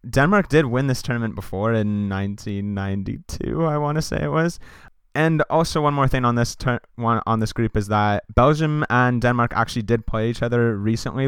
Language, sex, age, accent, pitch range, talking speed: English, male, 20-39, American, 105-135 Hz, 190 wpm